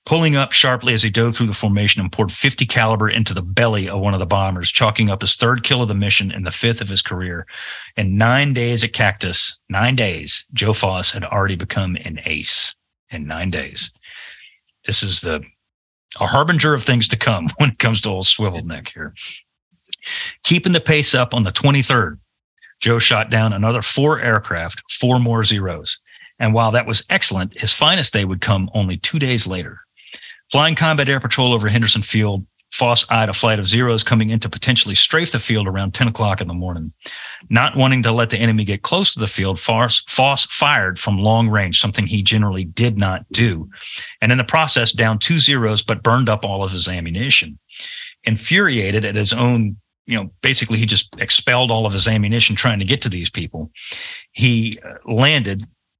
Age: 40-59